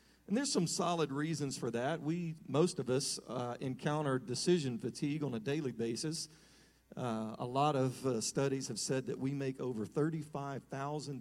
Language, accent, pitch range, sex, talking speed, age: English, American, 110-145 Hz, male, 165 wpm, 40-59